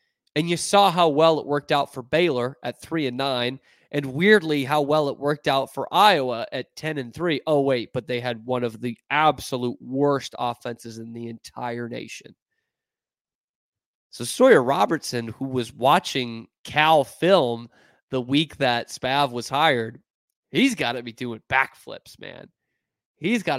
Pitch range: 120-150 Hz